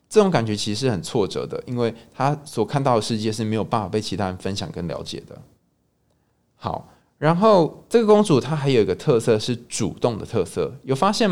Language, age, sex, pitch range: Chinese, 20-39, male, 105-145 Hz